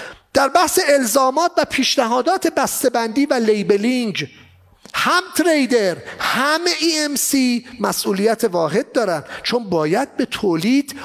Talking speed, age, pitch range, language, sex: 115 wpm, 40-59, 205-285 Hz, English, male